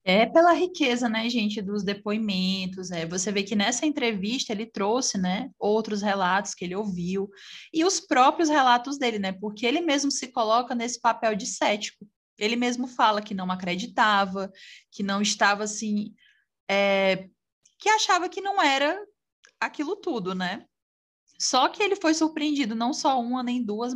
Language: Portuguese